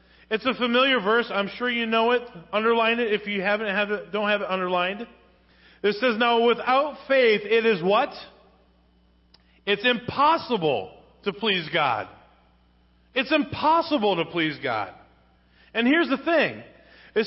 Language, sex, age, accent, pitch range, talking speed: English, male, 40-59, American, 210-270 Hz, 150 wpm